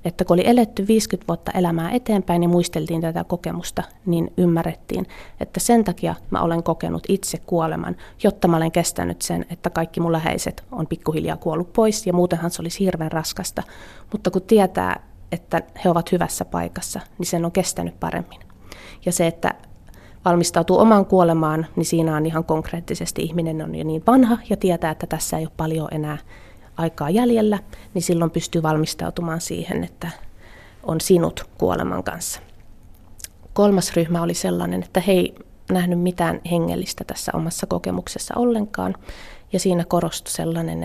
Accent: native